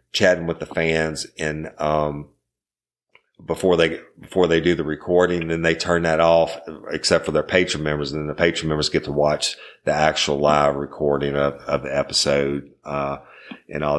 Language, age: English, 50-69